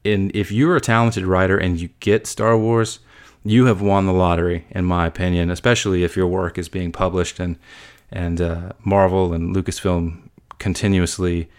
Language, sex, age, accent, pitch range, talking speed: English, male, 30-49, American, 90-105 Hz, 170 wpm